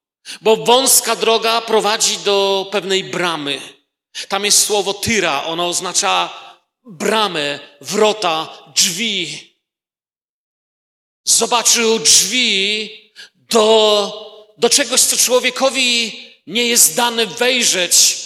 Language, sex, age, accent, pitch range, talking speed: Polish, male, 40-59, native, 175-220 Hz, 90 wpm